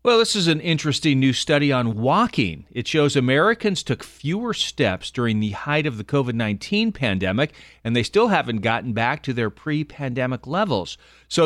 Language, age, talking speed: English, 40-59, 175 wpm